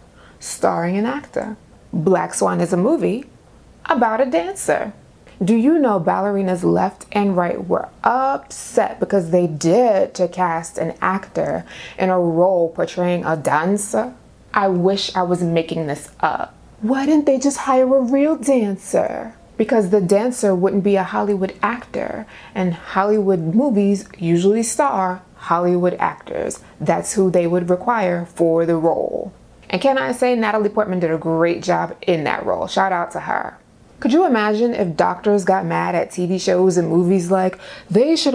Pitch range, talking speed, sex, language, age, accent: 180-230 Hz, 160 wpm, female, English, 20-39, American